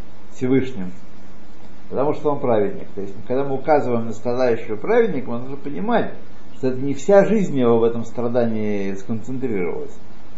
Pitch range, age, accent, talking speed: 105-150 Hz, 50-69, native, 150 wpm